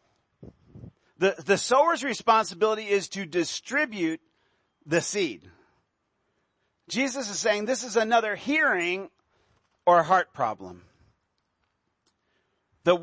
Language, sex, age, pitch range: English, male, 50-69, 160-255 Hz